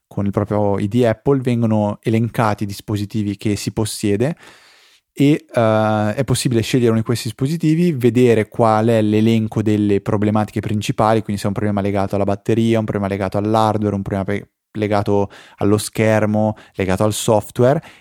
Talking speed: 155 wpm